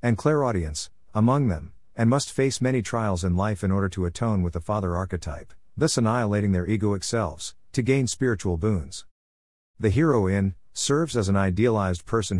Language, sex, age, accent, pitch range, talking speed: English, male, 50-69, American, 90-115 Hz, 180 wpm